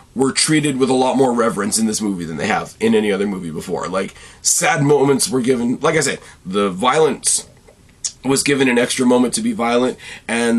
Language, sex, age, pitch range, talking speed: English, male, 30-49, 110-145 Hz, 210 wpm